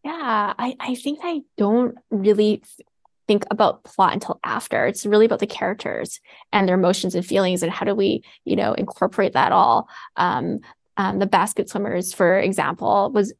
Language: English